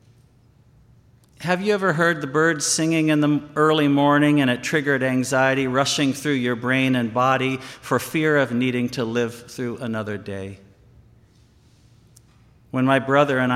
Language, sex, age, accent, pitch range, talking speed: English, male, 50-69, American, 110-140 Hz, 150 wpm